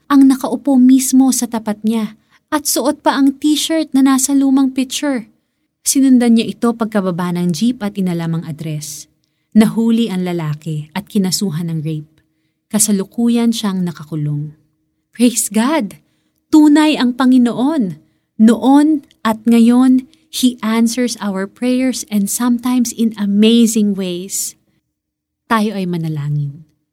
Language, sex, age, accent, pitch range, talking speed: Filipino, female, 20-39, native, 155-235 Hz, 120 wpm